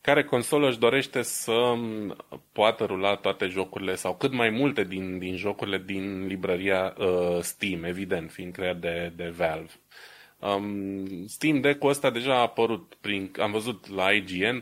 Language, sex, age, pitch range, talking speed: Romanian, male, 20-39, 95-115 Hz, 155 wpm